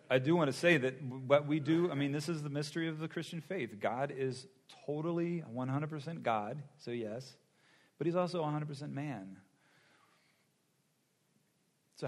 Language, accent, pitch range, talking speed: English, American, 120-150 Hz, 160 wpm